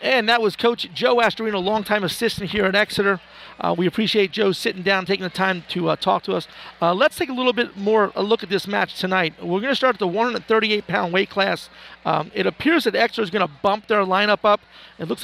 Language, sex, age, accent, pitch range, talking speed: English, male, 40-59, American, 180-210 Hz, 240 wpm